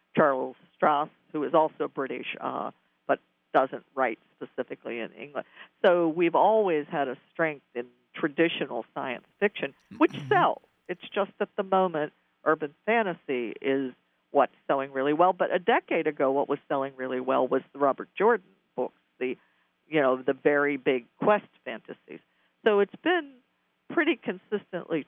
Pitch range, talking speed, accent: 130-180 Hz, 155 wpm, American